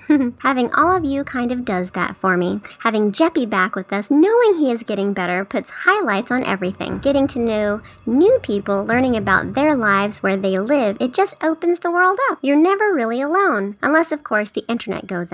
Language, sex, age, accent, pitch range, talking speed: English, male, 10-29, American, 220-340 Hz, 205 wpm